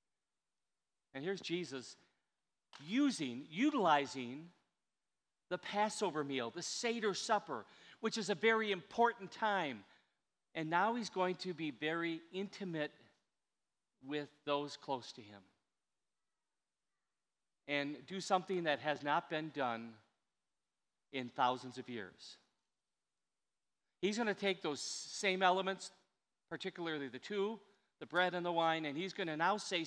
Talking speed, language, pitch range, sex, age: 125 wpm, English, 135-190 Hz, male, 40-59